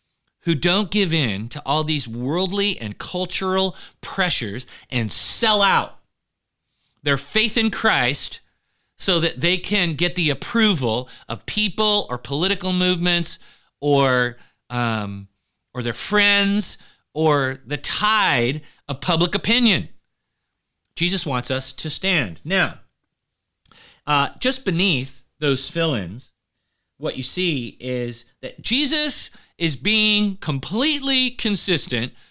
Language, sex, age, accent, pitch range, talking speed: English, male, 30-49, American, 135-210 Hz, 115 wpm